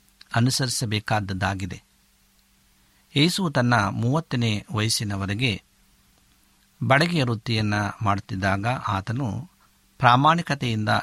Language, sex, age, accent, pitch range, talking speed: Kannada, male, 50-69, native, 105-135 Hz, 55 wpm